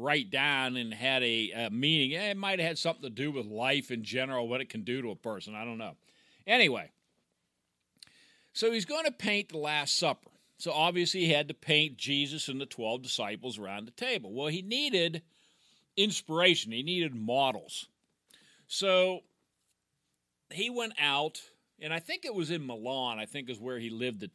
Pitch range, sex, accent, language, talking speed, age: 130-175 Hz, male, American, English, 185 wpm, 50-69